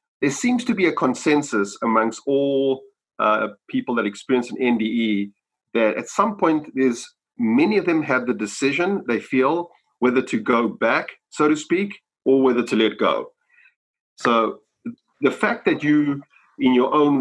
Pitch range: 115-180 Hz